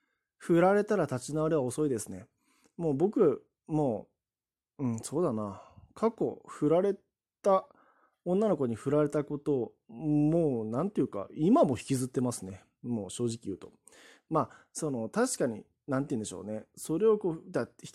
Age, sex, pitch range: 20-39, male, 115-175 Hz